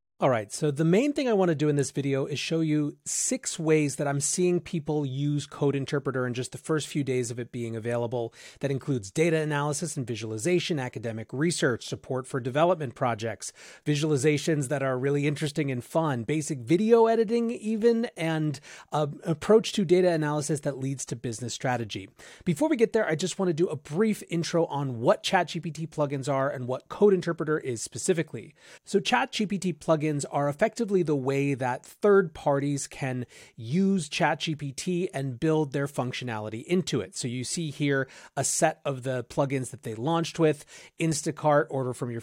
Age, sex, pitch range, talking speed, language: 30-49, male, 135-175 Hz, 180 wpm, English